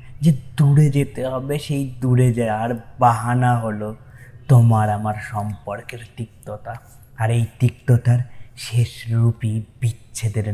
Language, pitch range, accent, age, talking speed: Bengali, 110-130 Hz, native, 20-39, 100 wpm